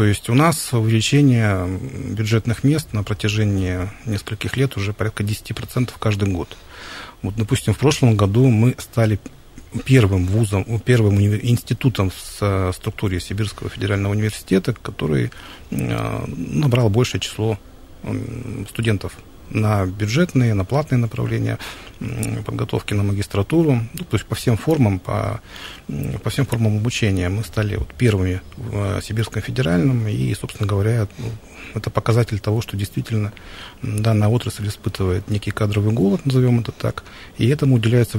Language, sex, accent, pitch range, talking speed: Russian, male, native, 100-120 Hz, 130 wpm